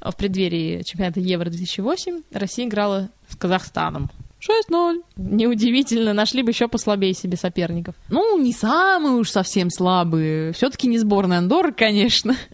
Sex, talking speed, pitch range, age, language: female, 130 wpm, 180-235 Hz, 20-39, Russian